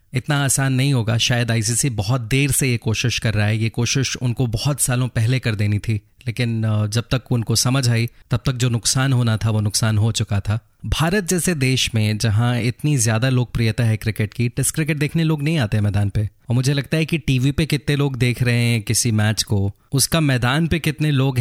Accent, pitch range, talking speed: native, 110-140 Hz, 220 wpm